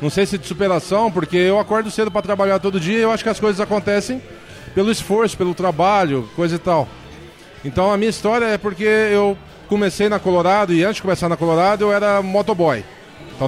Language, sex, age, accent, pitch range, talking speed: Portuguese, male, 20-39, Brazilian, 155-205 Hz, 210 wpm